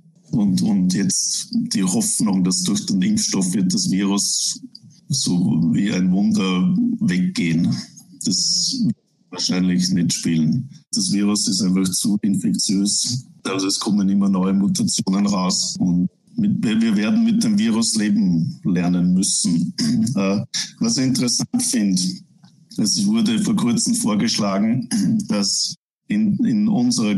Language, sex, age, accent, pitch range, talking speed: German, male, 60-79, German, 175-220 Hz, 130 wpm